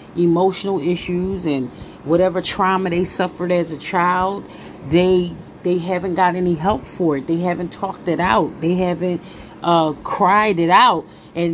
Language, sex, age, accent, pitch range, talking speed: English, female, 40-59, American, 165-195 Hz, 155 wpm